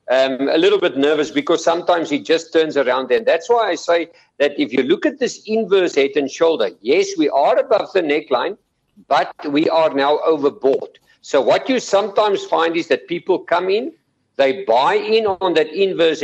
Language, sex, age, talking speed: English, male, 50-69, 195 wpm